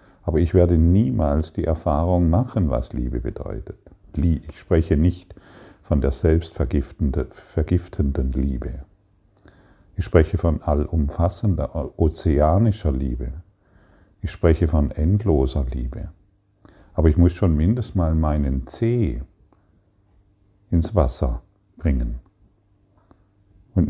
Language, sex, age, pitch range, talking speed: German, male, 50-69, 75-100 Hz, 100 wpm